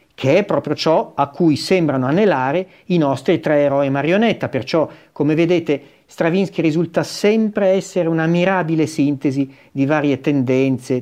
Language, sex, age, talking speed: Italian, male, 50-69, 135 wpm